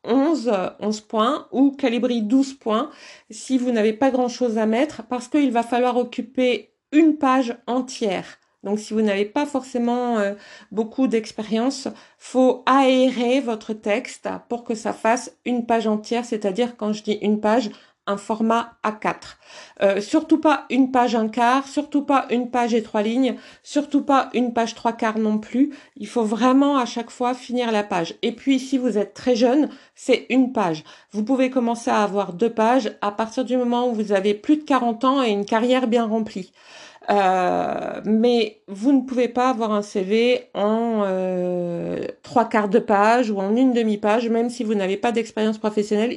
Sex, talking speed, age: female, 185 wpm, 50-69